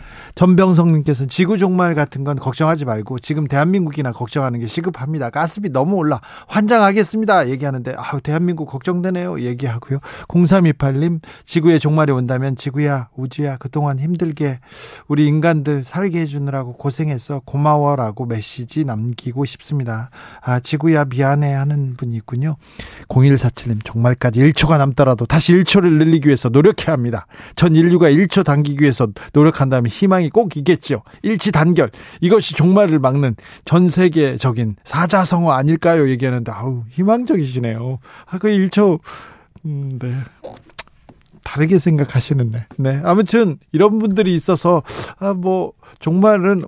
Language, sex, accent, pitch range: Korean, male, native, 130-170 Hz